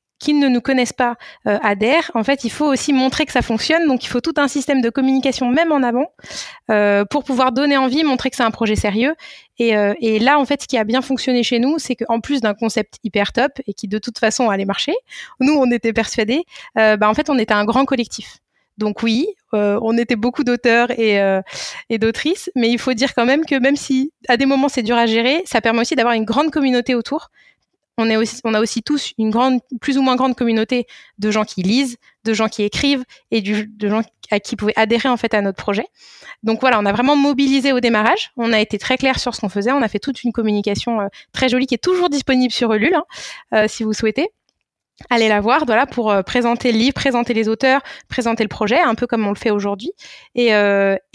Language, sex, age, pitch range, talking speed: French, female, 20-39, 220-270 Hz, 245 wpm